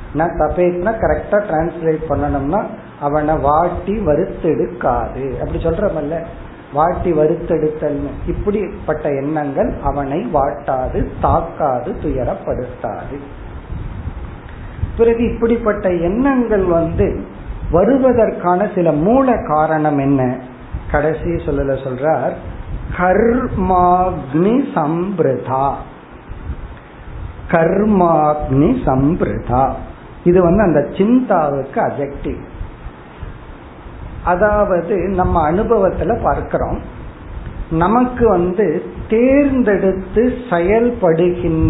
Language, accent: Tamil, native